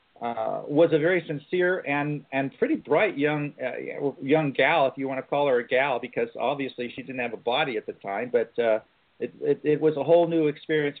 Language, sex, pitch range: English, male, 130-155 Hz